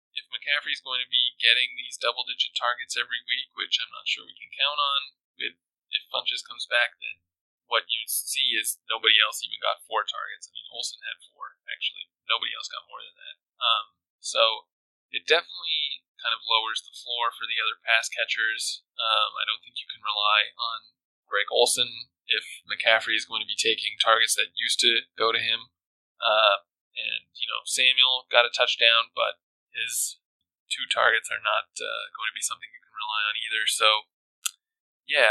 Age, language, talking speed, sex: 20-39, English, 190 wpm, male